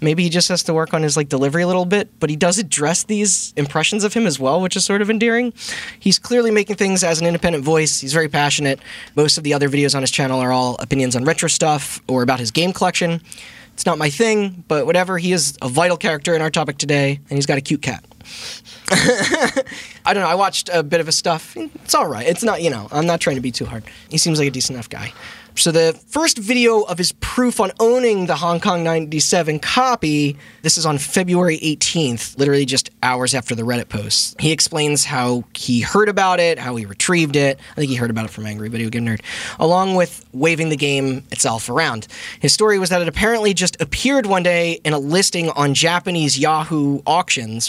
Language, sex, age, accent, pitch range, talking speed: English, male, 20-39, American, 140-185 Hz, 230 wpm